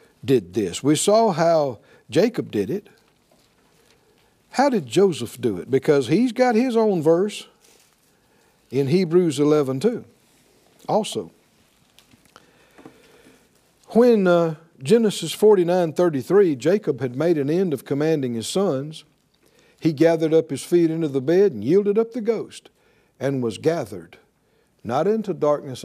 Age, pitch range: 60-79, 140-210 Hz